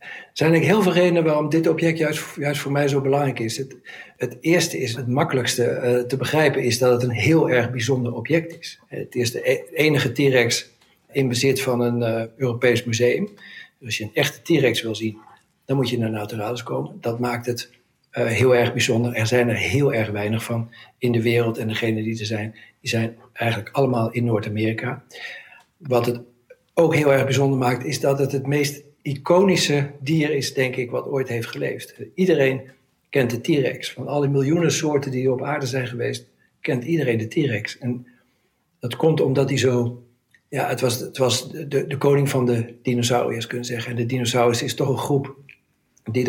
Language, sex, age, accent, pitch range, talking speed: Dutch, male, 60-79, Dutch, 120-145 Hz, 200 wpm